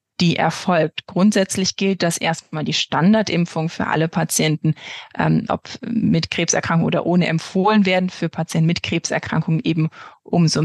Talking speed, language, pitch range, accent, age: 140 wpm, German, 165-195 Hz, German, 20-39